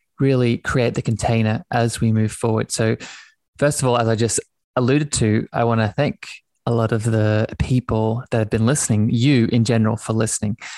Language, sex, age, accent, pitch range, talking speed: English, male, 20-39, Australian, 115-130 Hz, 195 wpm